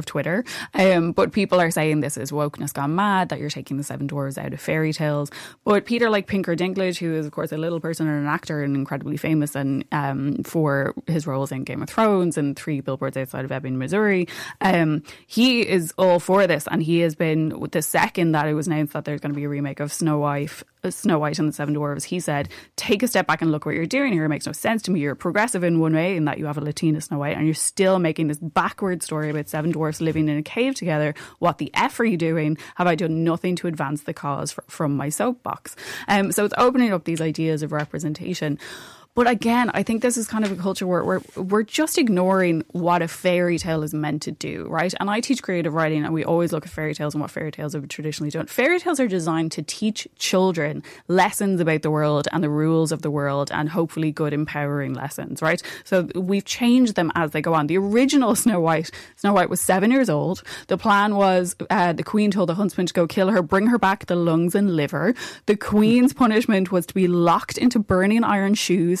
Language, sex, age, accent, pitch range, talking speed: English, female, 20-39, Irish, 150-190 Hz, 240 wpm